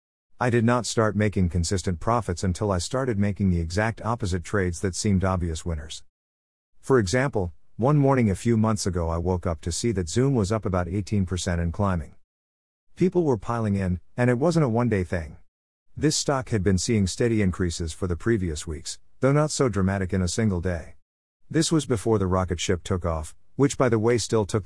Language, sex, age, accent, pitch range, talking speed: English, male, 50-69, American, 85-115 Hz, 200 wpm